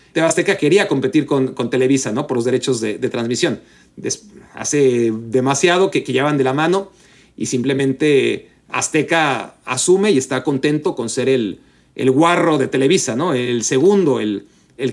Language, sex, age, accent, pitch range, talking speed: Spanish, male, 40-59, Mexican, 130-175 Hz, 165 wpm